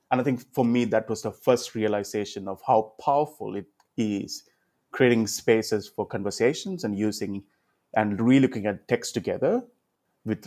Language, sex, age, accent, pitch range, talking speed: English, male, 30-49, Indian, 105-120 Hz, 155 wpm